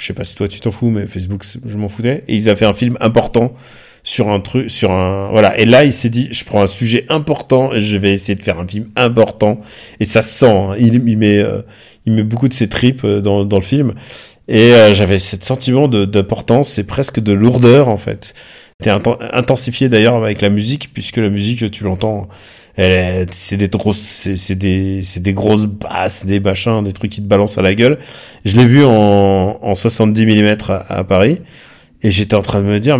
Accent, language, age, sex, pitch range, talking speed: French, French, 30-49, male, 100-120 Hz, 235 wpm